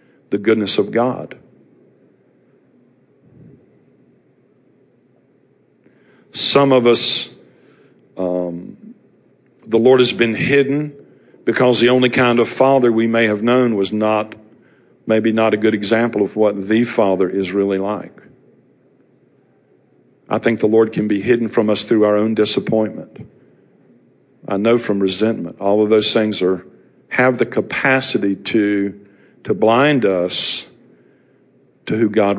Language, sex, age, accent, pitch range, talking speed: English, male, 50-69, American, 95-115 Hz, 130 wpm